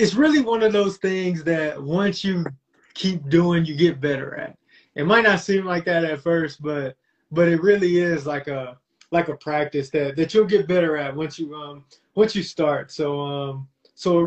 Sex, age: male, 20-39